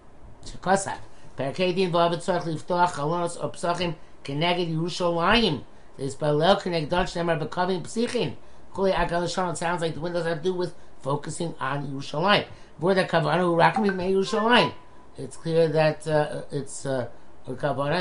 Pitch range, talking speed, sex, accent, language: 140-180 Hz, 75 wpm, male, American, English